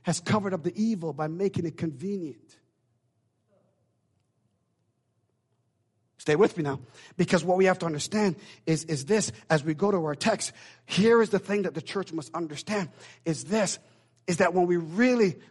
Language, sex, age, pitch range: English, male, 50-69, 150-240 Hz